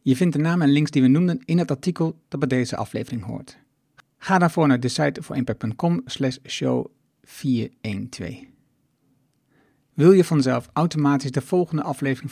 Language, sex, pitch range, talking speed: Dutch, male, 125-150 Hz, 155 wpm